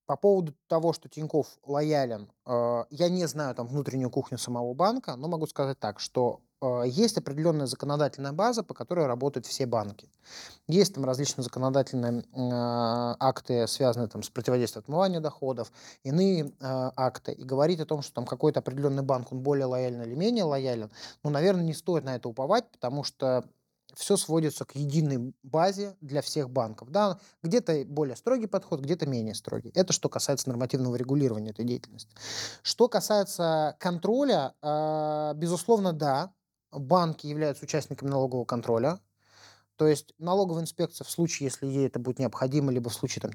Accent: native